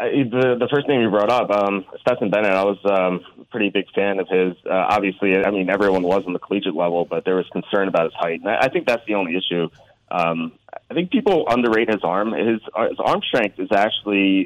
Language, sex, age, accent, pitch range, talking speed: English, male, 30-49, American, 90-115 Hz, 235 wpm